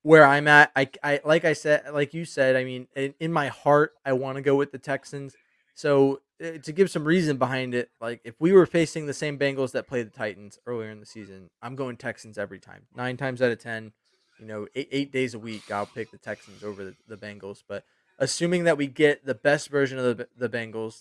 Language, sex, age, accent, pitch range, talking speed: English, male, 20-39, American, 115-145 Hz, 245 wpm